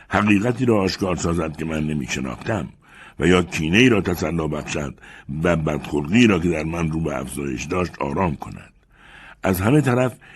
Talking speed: 160 wpm